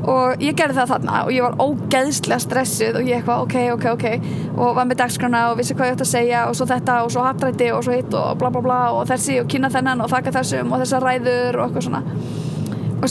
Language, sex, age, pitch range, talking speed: English, female, 20-39, 235-265 Hz, 250 wpm